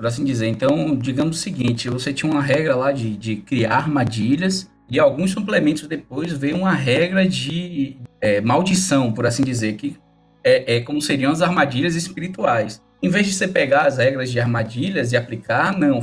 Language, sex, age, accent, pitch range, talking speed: Portuguese, male, 20-39, Brazilian, 125-175 Hz, 180 wpm